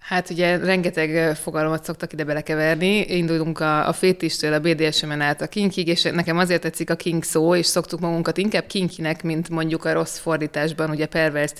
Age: 20-39